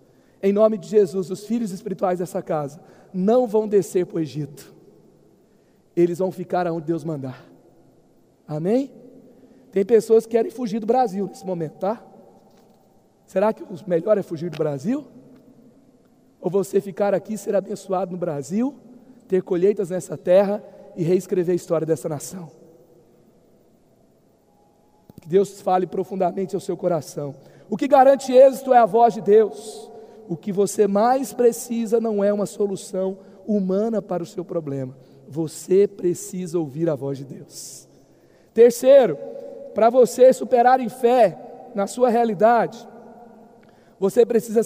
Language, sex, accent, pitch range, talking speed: Portuguese, male, Brazilian, 185-250 Hz, 145 wpm